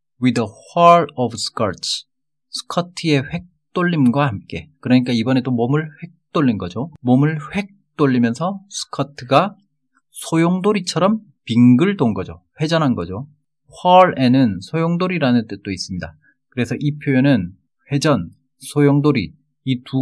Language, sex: Korean, male